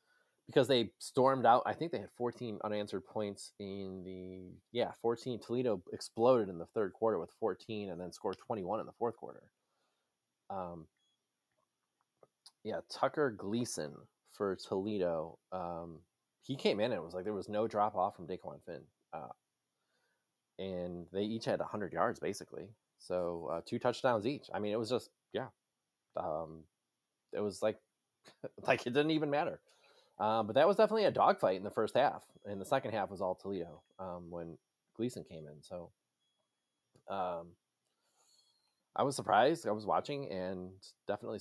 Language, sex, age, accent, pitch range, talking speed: English, male, 20-39, American, 90-120 Hz, 170 wpm